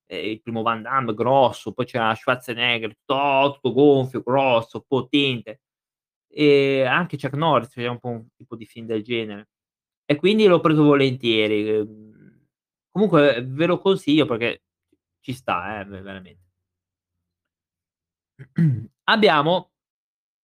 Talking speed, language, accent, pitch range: 115 wpm, Italian, native, 115-150 Hz